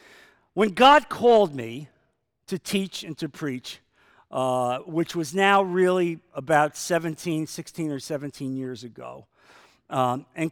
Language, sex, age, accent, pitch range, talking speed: English, male, 50-69, American, 140-205 Hz, 130 wpm